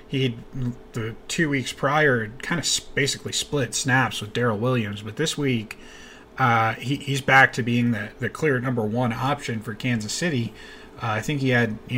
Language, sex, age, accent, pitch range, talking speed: English, male, 20-39, American, 115-145 Hz, 185 wpm